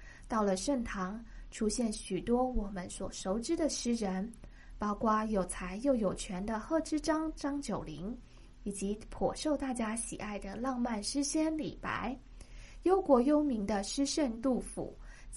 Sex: female